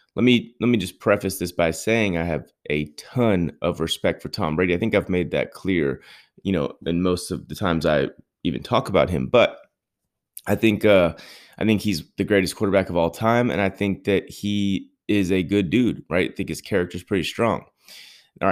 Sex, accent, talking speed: male, American, 215 wpm